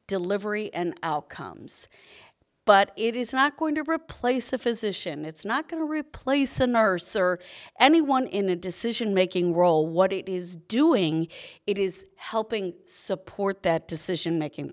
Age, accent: 50-69, American